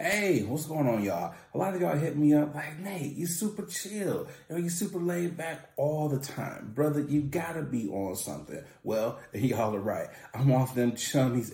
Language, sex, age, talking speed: English, male, 30-49, 210 wpm